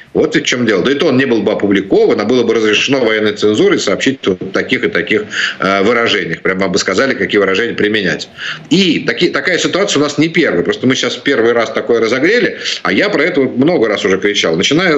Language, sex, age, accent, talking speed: Ukrainian, male, 50-69, native, 225 wpm